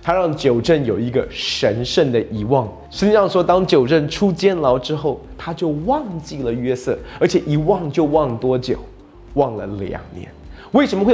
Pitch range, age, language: 115-170 Hz, 20-39, Chinese